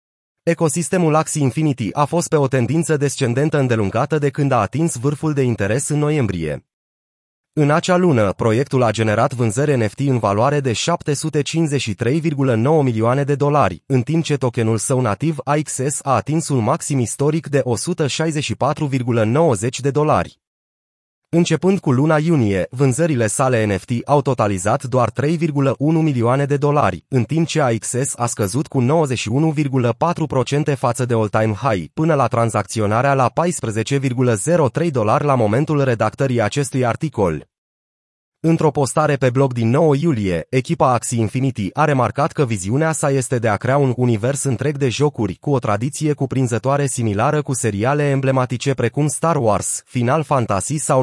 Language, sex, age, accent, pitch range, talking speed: Romanian, male, 20-39, native, 115-150 Hz, 145 wpm